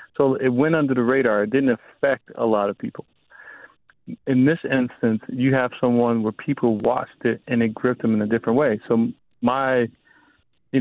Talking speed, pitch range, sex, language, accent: 190 wpm, 110-130 Hz, male, English, American